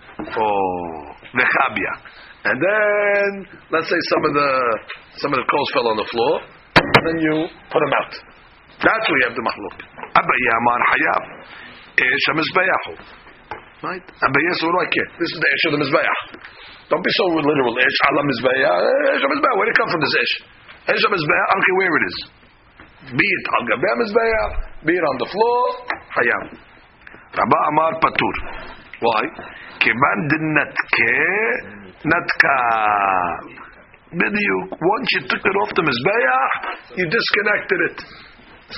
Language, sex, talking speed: English, male, 120 wpm